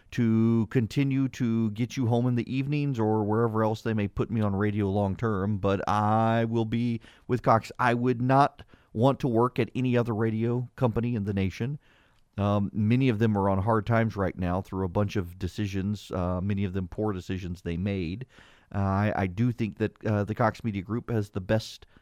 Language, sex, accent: English, male, American